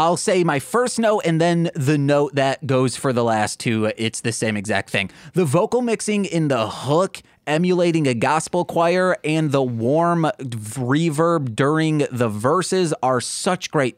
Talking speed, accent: 170 wpm, American